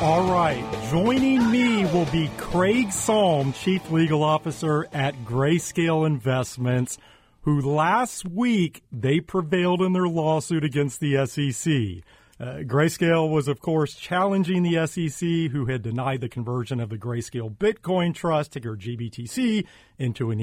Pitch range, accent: 125-165 Hz, American